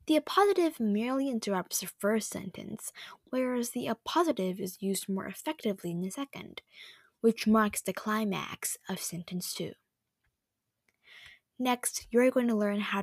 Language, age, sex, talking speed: English, 10-29, female, 140 wpm